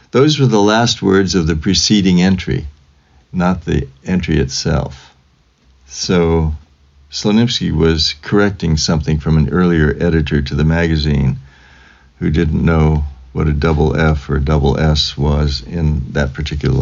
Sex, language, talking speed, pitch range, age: male, English, 140 wpm, 70-95 Hz, 60-79